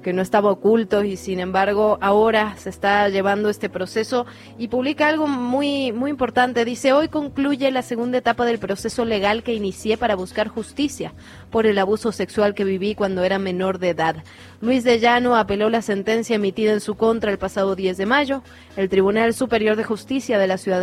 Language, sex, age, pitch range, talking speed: Spanish, female, 20-39, 190-230 Hz, 195 wpm